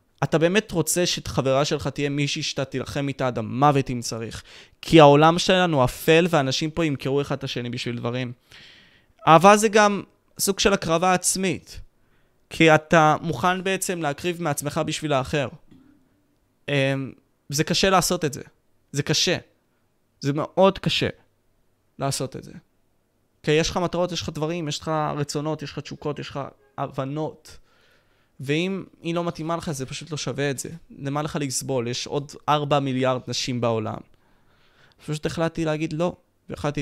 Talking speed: 155 wpm